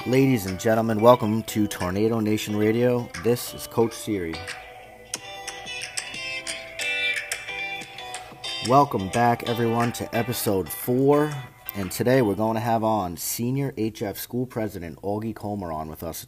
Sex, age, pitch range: male, 30-49, 95-115 Hz